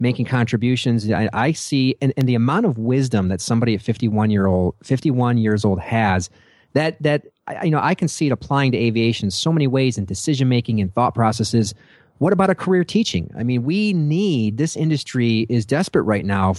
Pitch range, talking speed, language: 110-150 Hz, 215 wpm, English